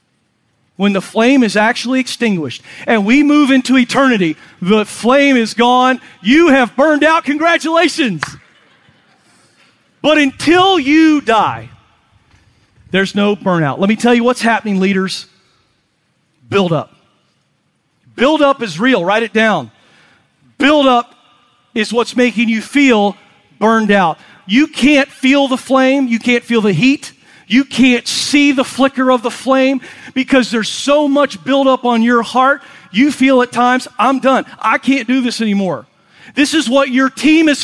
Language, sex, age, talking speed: English, male, 40-59, 150 wpm